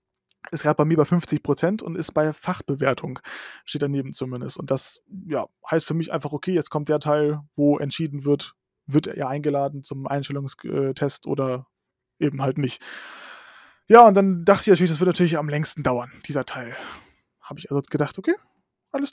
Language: German